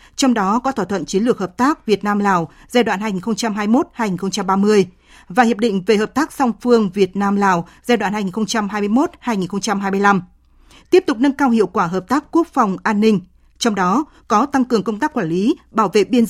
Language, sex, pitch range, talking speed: Vietnamese, female, 195-255 Hz, 195 wpm